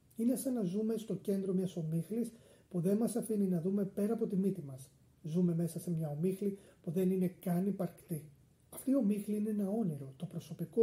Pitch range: 160-195 Hz